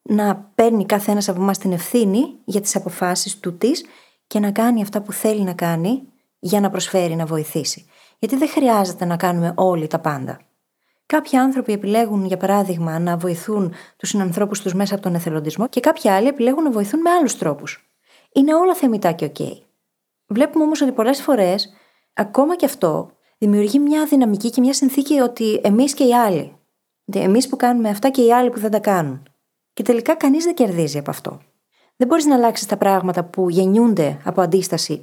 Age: 20-39